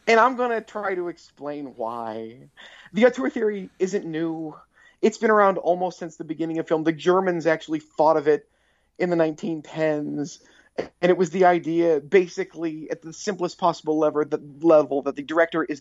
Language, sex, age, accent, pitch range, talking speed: English, male, 30-49, American, 145-180 Hz, 180 wpm